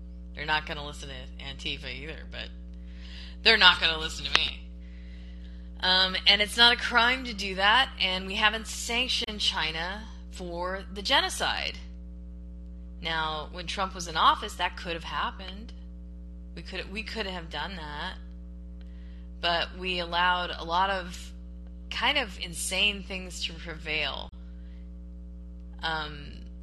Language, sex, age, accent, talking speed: English, female, 20-39, American, 140 wpm